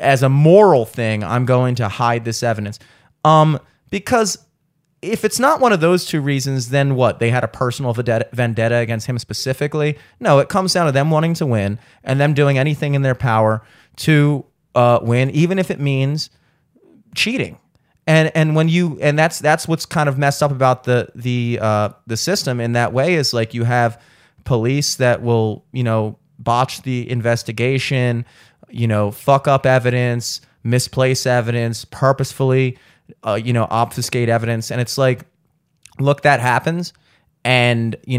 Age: 30-49